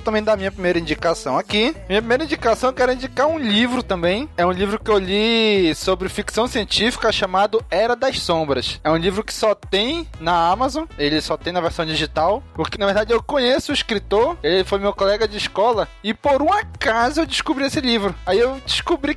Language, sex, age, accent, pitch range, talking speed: Portuguese, male, 20-39, Brazilian, 175-240 Hz, 205 wpm